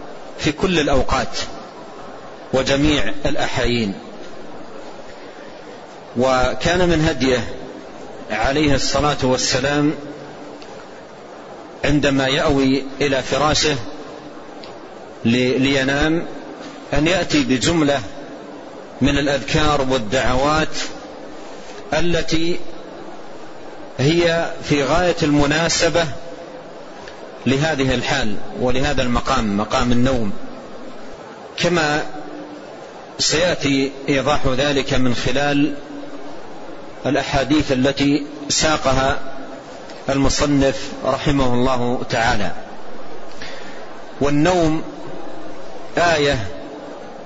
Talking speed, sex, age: 60 wpm, male, 40-59